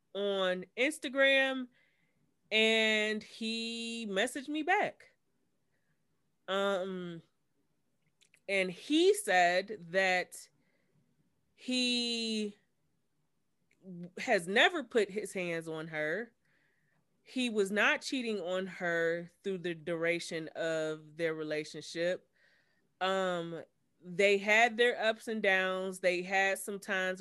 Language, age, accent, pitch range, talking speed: English, 30-49, American, 180-225 Hz, 95 wpm